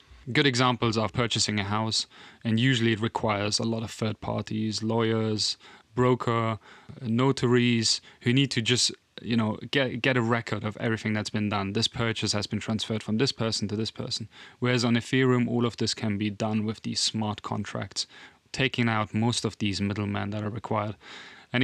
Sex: male